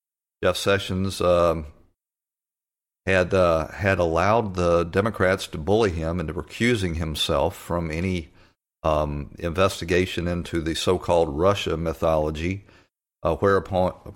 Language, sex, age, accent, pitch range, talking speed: English, male, 50-69, American, 85-100 Hz, 110 wpm